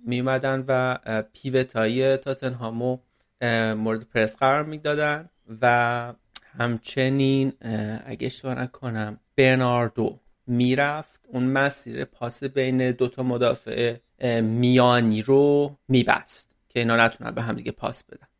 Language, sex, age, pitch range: Persian, male, 30-49, 115-140 Hz